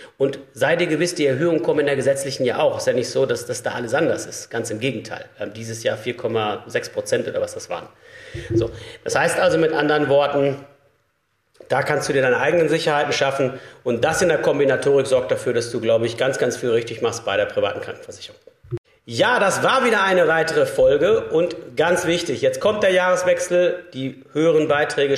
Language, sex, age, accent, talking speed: German, male, 50-69, German, 205 wpm